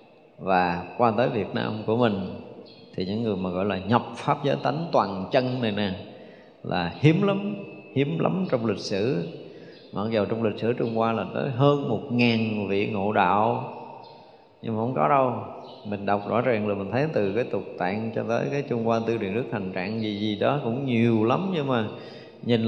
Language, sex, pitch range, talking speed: Vietnamese, male, 105-135 Hz, 210 wpm